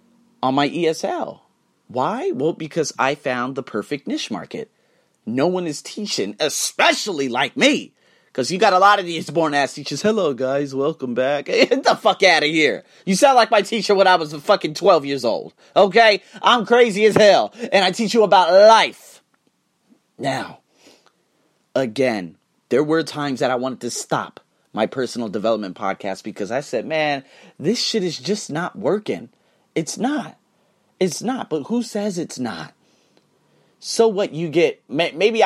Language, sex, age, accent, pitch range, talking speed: English, male, 30-49, American, 145-205 Hz, 170 wpm